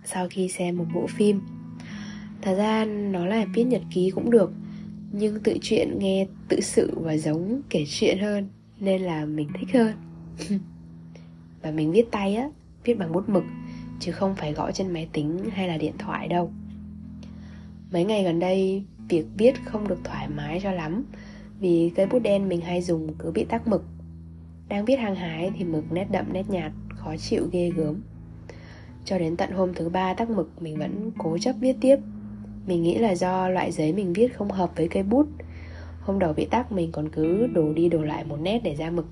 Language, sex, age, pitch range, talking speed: Vietnamese, female, 20-39, 155-200 Hz, 205 wpm